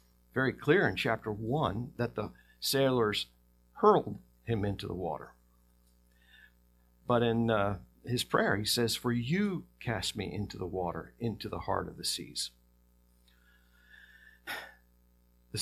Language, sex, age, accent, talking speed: English, male, 50-69, American, 130 wpm